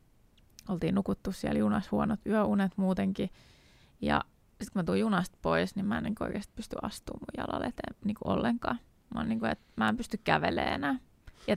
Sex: female